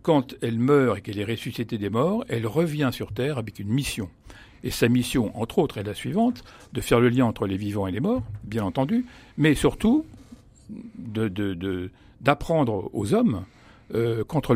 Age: 60-79